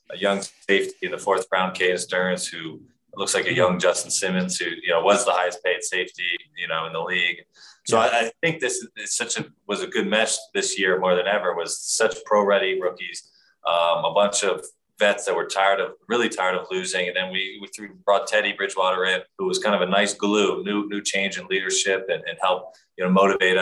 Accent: American